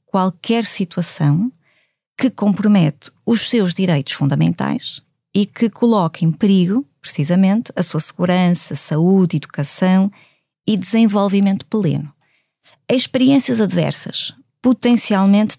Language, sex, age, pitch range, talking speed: Portuguese, female, 20-39, 150-195 Hz, 95 wpm